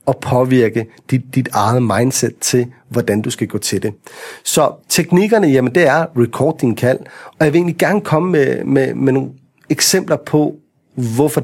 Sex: male